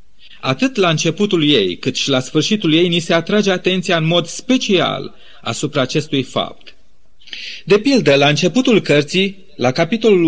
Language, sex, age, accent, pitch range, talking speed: Romanian, male, 30-49, native, 150-185 Hz, 150 wpm